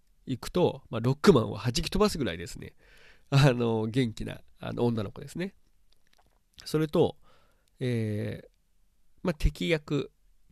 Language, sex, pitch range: Japanese, male, 100-145 Hz